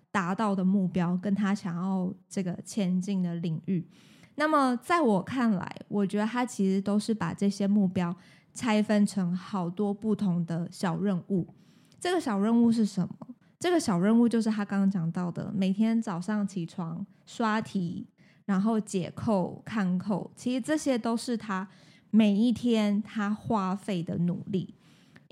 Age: 20-39